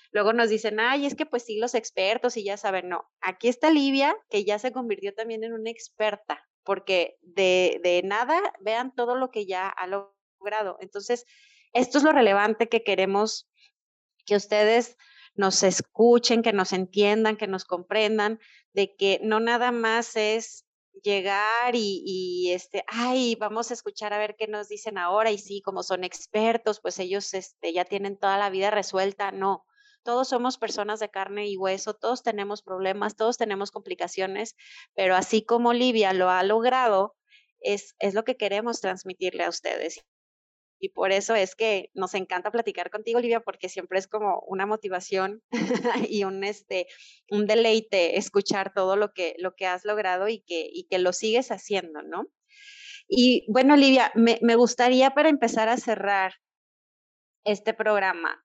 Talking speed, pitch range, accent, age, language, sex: 165 wpm, 195-235 Hz, Mexican, 30-49, Spanish, female